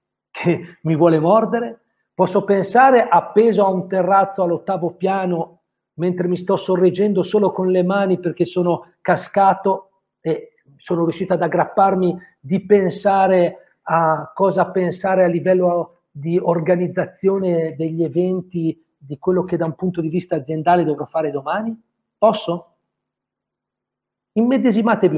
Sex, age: male, 50-69